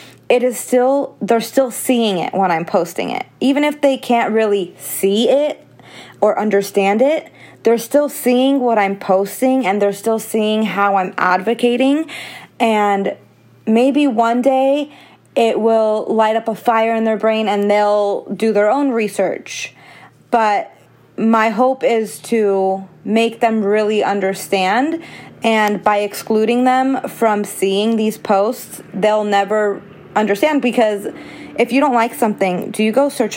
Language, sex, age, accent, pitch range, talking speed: English, female, 20-39, American, 200-240 Hz, 150 wpm